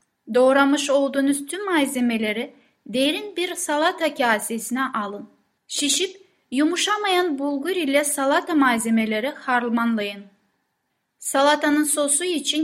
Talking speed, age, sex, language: 90 wpm, 10-29, female, Turkish